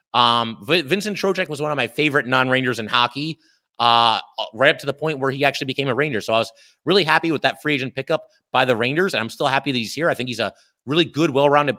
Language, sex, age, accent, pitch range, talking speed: English, male, 30-49, American, 130-155 Hz, 255 wpm